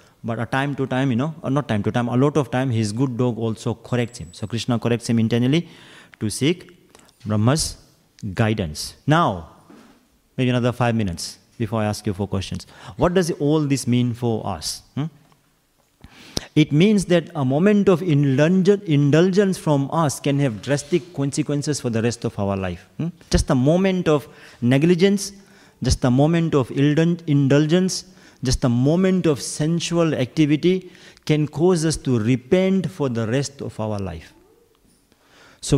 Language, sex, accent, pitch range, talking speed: English, male, Indian, 120-165 Hz, 160 wpm